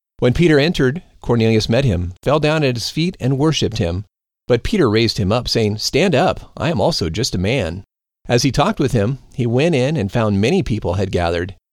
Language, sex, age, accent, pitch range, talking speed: English, male, 40-59, American, 105-145 Hz, 215 wpm